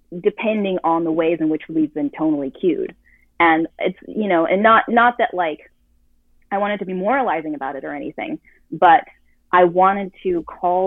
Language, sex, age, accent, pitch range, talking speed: English, female, 30-49, American, 155-210 Hz, 180 wpm